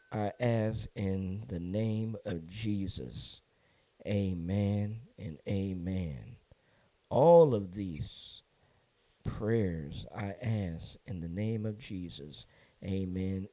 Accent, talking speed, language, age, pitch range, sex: American, 100 wpm, English, 50-69, 95-120 Hz, male